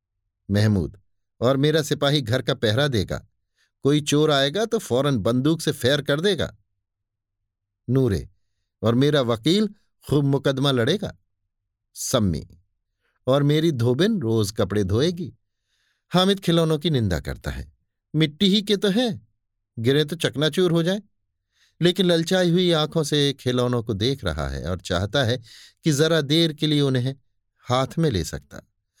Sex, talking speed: male, 145 wpm